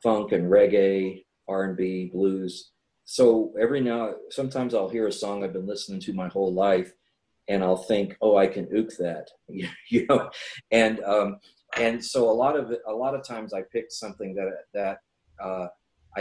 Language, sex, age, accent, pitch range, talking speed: English, male, 40-59, American, 90-100 Hz, 175 wpm